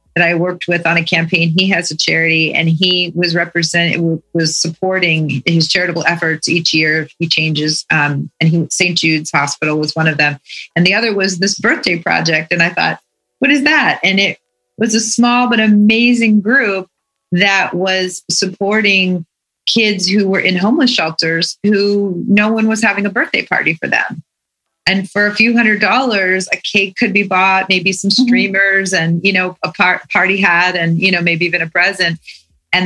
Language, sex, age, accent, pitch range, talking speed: Russian, female, 30-49, American, 165-200 Hz, 190 wpm